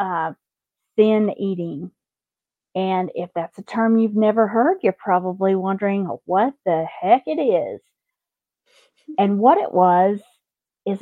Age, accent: 50-69, American